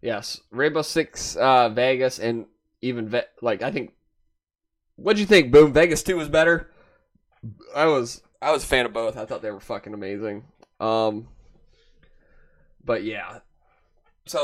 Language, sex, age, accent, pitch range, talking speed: English, male, 20-39, American, 115-130 Hz, 160 wpm